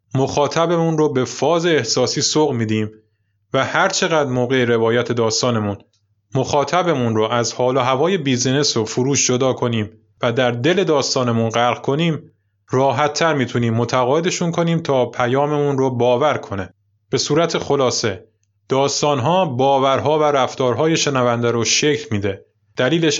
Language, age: Persian, 20-39